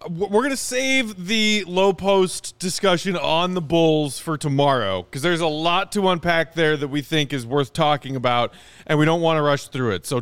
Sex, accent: male, American